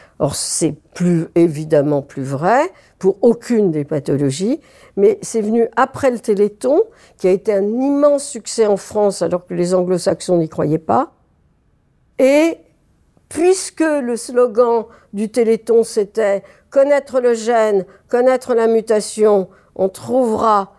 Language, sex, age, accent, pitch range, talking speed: French, female, 60-79, French, 180-240 Hz, 135 wpm